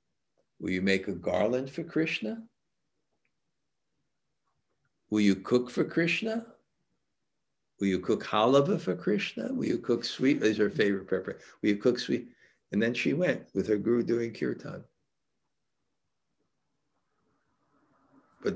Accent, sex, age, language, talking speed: American, male, 60-79, English, 135 wpm